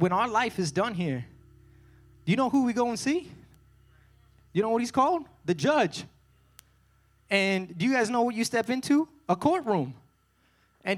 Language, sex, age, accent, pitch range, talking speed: English, male, 20-39, American, 155-255 Hz, 180 wpm